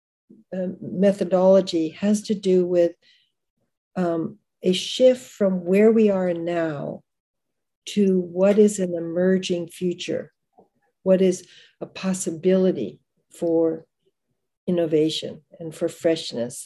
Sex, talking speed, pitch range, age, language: female, 105 wpm, 165-195 Hz, 60-79, English